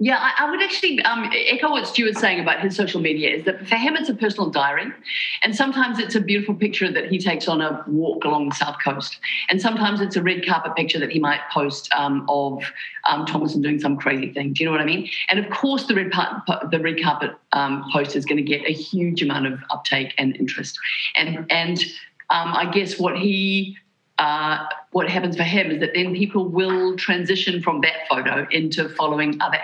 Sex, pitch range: female, 150-195 Hz